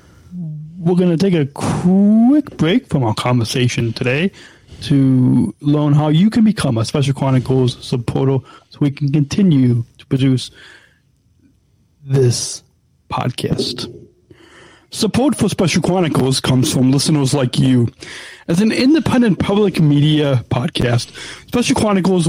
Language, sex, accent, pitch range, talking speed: English, male, American, 130-185 Hz, 125 wpm